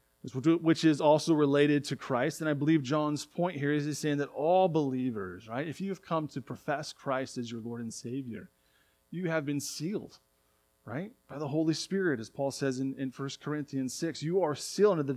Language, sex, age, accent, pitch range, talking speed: English, male, 30-49, American, 115-155 Hz, 205 wpm